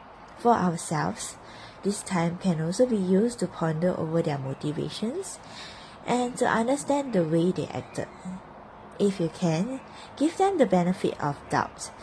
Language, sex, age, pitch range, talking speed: English, female, 20-39, 165-215 Hz, 145 wpm